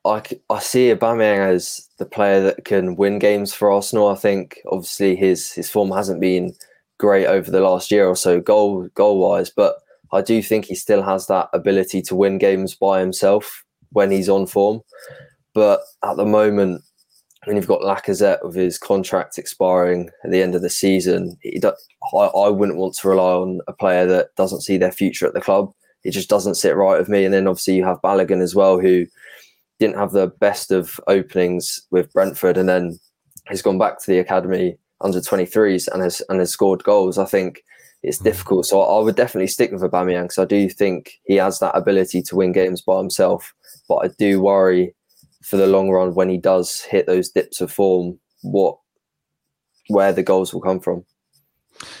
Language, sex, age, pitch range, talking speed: English, male, 20-39, 90-100 Hz, 200 wpm